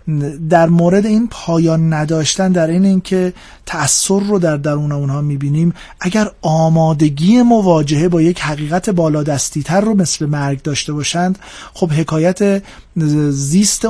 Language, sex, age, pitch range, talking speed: Persian, male, 40-59, 155-190 Hz, 135 wpm